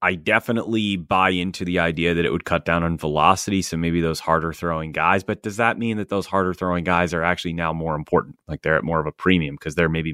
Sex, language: male, English